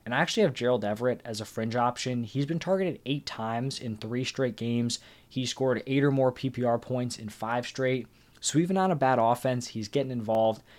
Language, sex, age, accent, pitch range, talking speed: English, male, 20-39, American, 115-130 Hz, 210 wpm